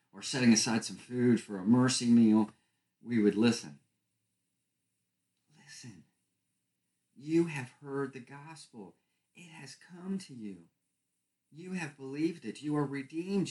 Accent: American